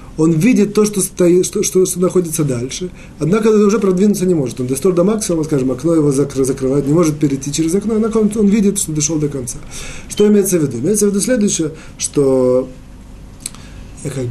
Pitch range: 155-210 Hz